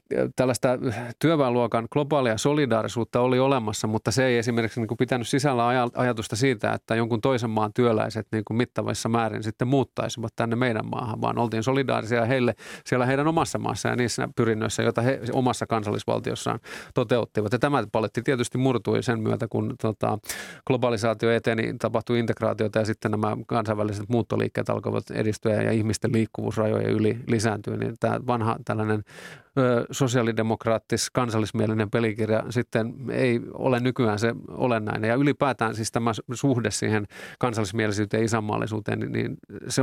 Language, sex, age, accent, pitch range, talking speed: Finnish, male, 30-49, native, 110-125 Hz, 140 wpm